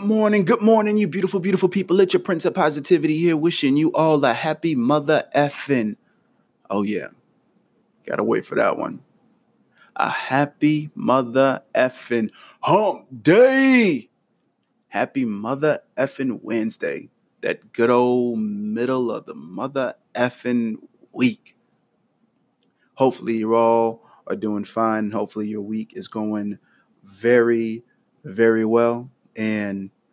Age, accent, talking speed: 30-49, American, 120 wpm